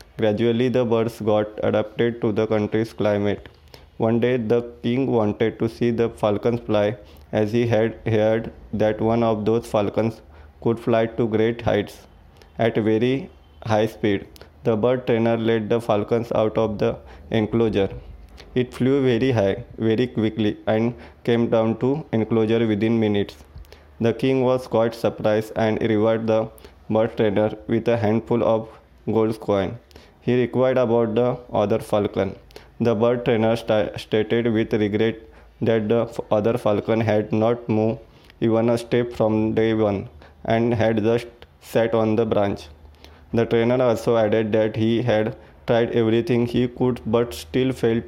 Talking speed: 150 wpm